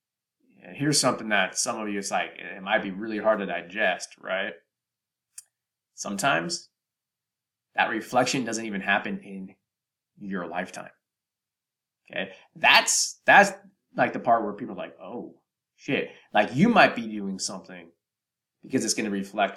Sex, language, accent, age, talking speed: male, English, American, 20-39, 150 wpm